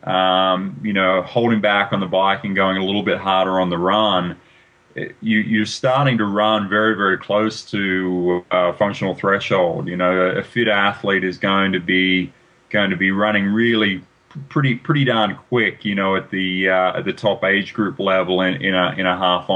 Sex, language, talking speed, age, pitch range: male, English, 205 wpm, 30-49, 95-110 Hz